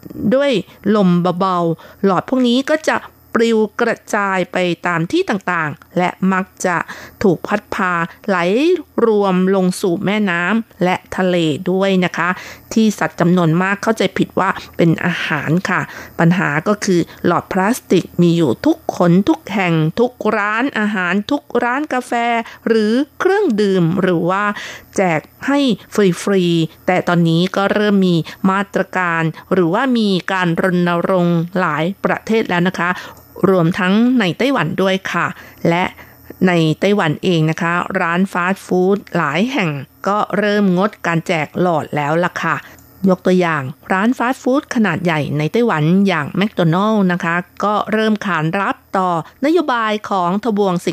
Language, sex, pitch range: Thai, female, 175-215 Hz